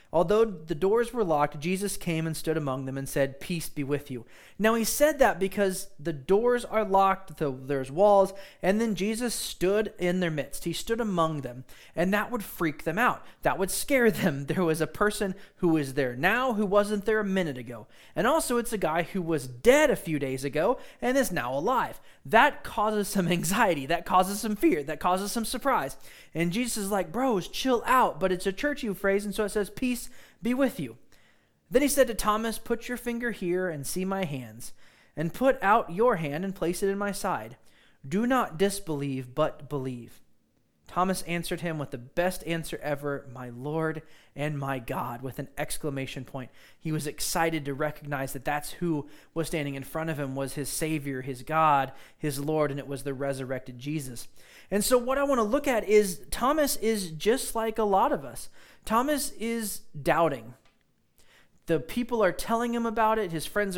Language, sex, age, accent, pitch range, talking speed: English, male, 20-39, American, 145-215 Hz, 200 wpm